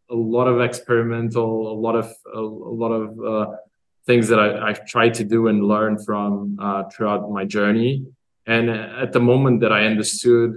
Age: 20-39